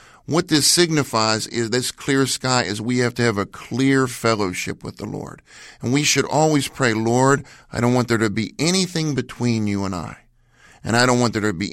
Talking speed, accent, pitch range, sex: 215 wpm, American, 115-150 Hz, male